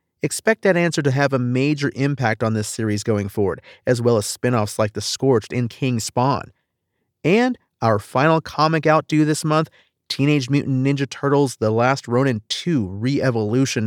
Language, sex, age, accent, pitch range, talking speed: English, male, 30-49, American, 115-150 Hz, 175 wpm